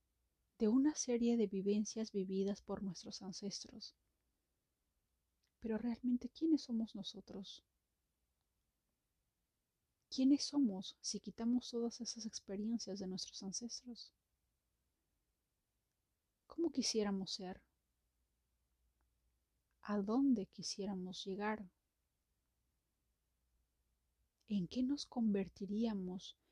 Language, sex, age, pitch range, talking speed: Spanish, female, 30-49, 175-225 Hz, 80 wpm